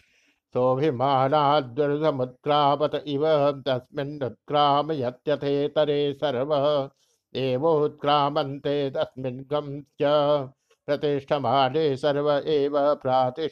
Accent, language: native, Hindi